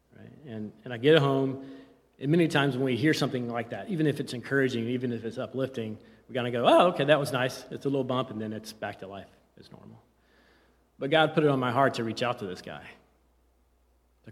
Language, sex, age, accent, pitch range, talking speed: English, male, 30-49, American, 110-135 Hz, 240 wpm